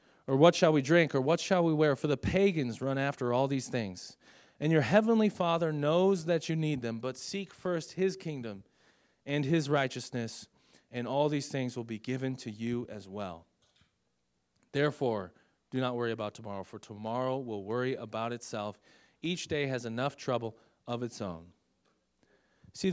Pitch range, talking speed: 110-155 Hz, 175 wpm